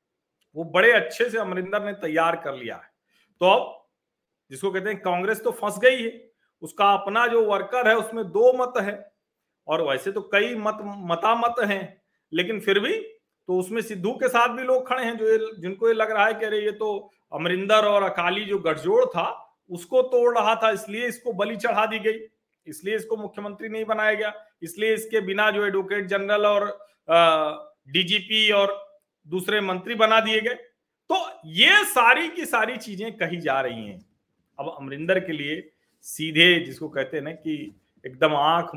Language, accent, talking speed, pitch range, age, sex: Hindi, native, 135 wpm, 165-225 Hz, 40-59, male